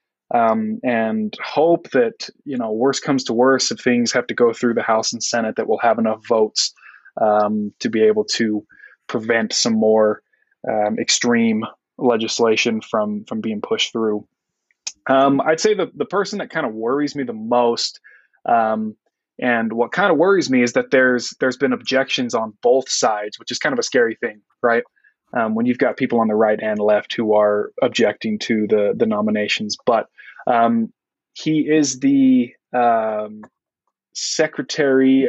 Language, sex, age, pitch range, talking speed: English, male, 20-39, 110-155 Hz, 175 wpm